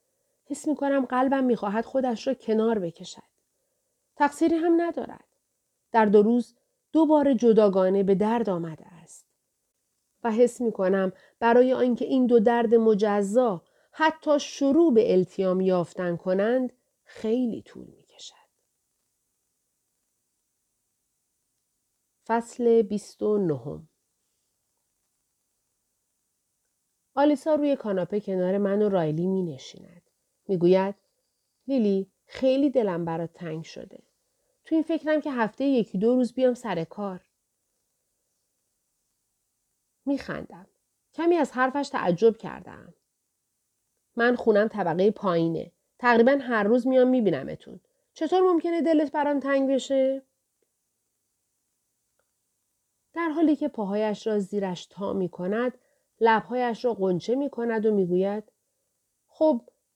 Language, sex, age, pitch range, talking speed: Persian, female, 40-59, 195-275 Hz, 110 wpm